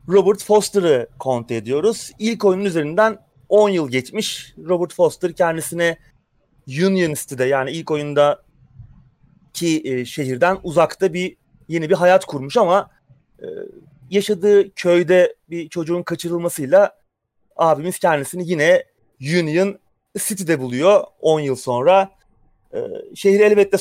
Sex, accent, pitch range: male, native, 150-210 Hz